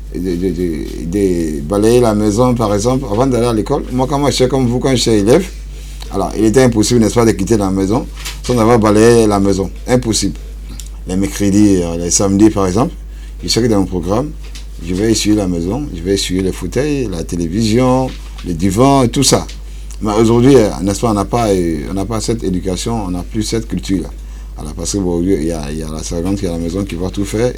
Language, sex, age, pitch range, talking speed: English, male, 50-69, 90-115 Hz, 220 wpm